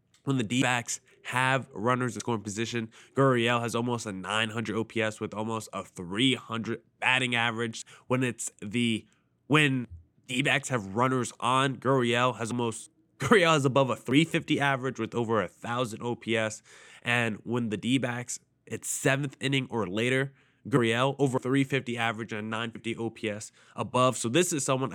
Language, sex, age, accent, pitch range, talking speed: English, male, 20-39, American, 115-135 Hz, 150 wpm